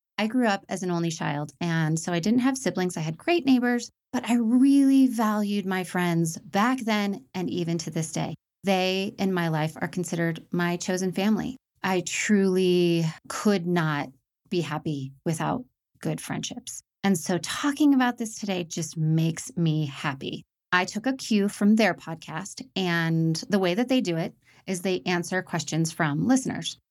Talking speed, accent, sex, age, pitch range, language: 175 wpm, American, female, 30-49, 165-210 Hz, English